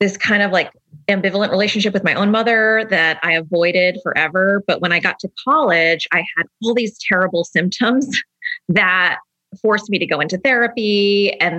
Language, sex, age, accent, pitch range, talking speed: English, female, 30-49, American, 170-215 Hz, 175 wpm